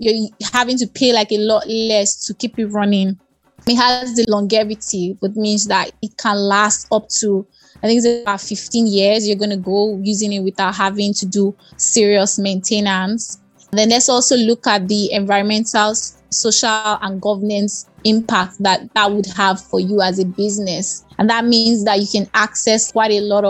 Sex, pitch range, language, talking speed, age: female, 200-225 Hz, English, 185 wpm, 20-39